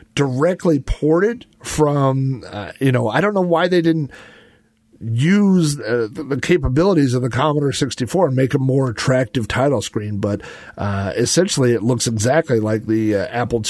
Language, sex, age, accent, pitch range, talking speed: English, male, 50-69, American, 120-160 Hz, 165 wpm